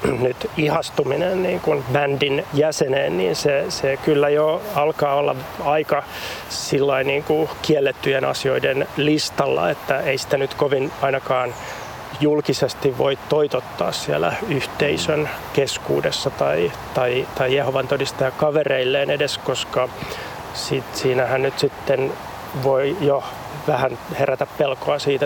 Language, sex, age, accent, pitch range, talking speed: Finnish, male, 30-49, native, 130-150 Hz, 115 wpm